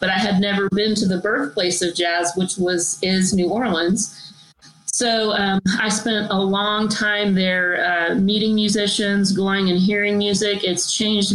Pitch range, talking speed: 180-205 Hz, 170 wpm